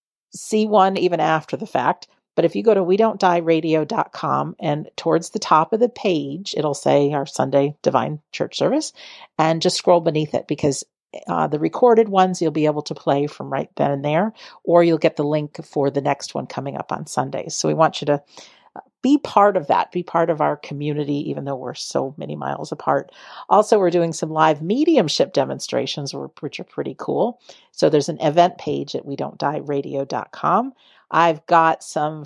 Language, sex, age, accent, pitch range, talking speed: English, female, 50-69, American, 145-185 Hz, 205 wpm